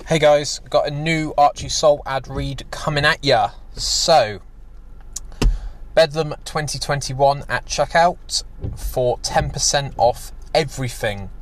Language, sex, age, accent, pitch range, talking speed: English, male, 20-39, British, 115-135 Hz, 110 wpm